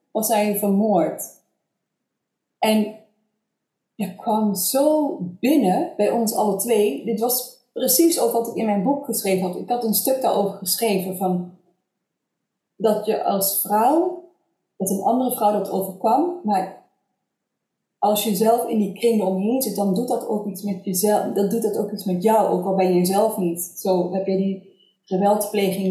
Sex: female